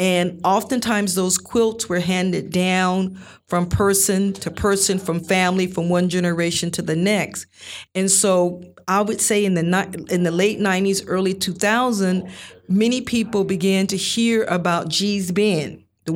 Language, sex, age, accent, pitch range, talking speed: English, female, 40-59, American, 170-210 Hz, 150 wpm